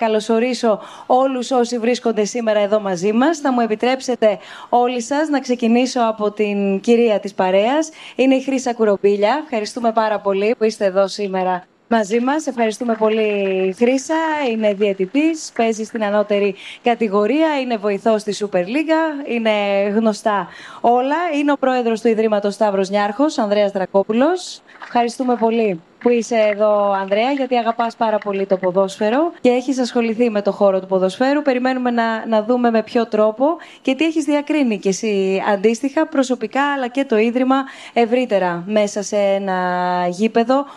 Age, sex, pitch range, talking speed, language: 20-39, female, 205-260 Hz, 150 wpm, Greek